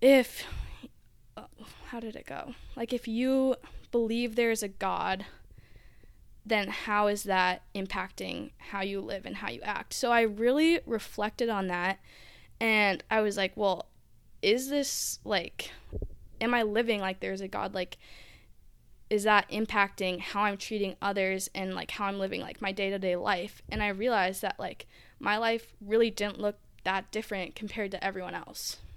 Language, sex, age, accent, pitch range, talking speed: English, female, 10-29, American, 195-230 Hz, 160 wpm